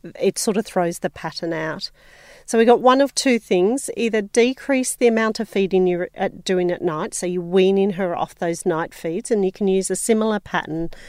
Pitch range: 175-220 Hz